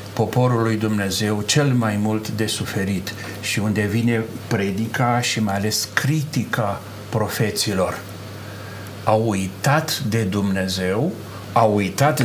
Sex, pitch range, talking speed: male, 105-125 Hz, 110 wpm